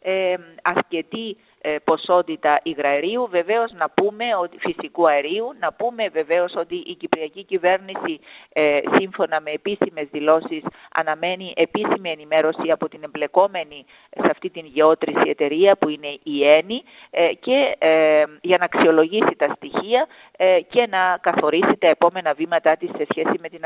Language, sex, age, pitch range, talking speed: Greek, female, 40-59, 155-220 Hz, 130 wpm